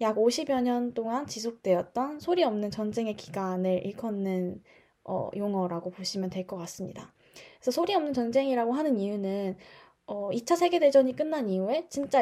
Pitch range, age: 200-270 Hz, 10-29